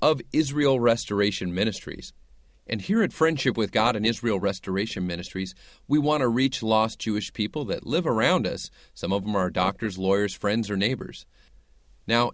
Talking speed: 170 wpm